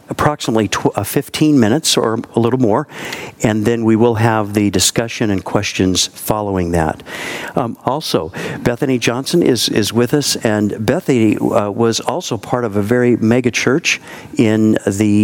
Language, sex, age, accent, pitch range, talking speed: English, male, 50-69, American, 105-125 Hz, 155 wpm